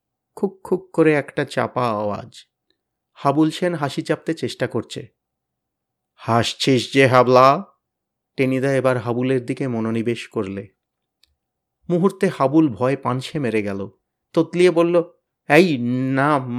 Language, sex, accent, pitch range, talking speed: Bengali, male, native, 135-185 Hz, 110 wpm